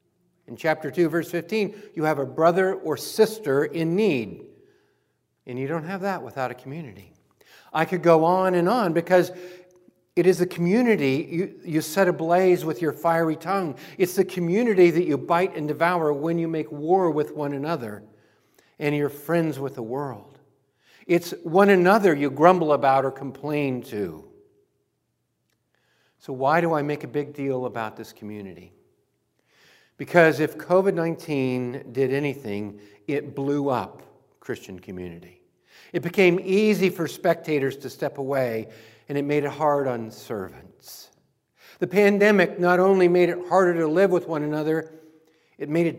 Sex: male